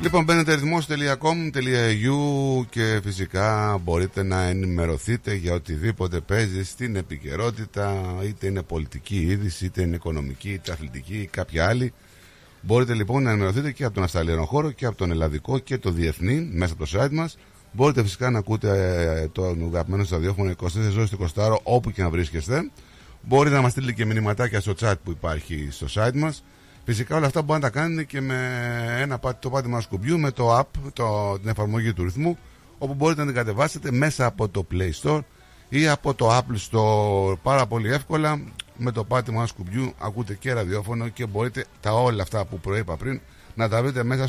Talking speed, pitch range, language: 180 wpm, 95-130 Hz, Greek